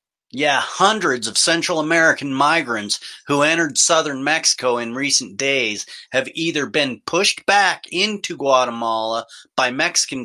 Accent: American